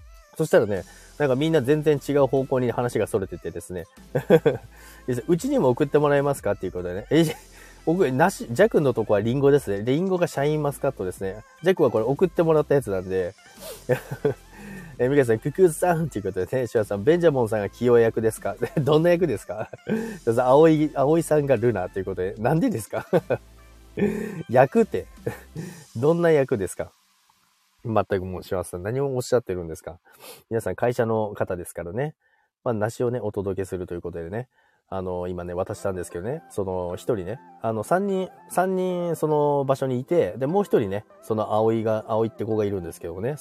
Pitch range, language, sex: 105-165 Hz, Japanese, male